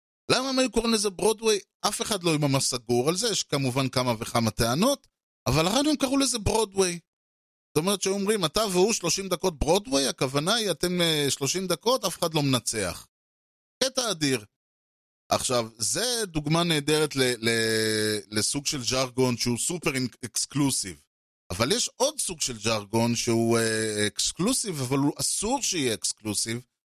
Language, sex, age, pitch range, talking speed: Hebrew, male, 30-49, 115-180 Hz, 155 wpm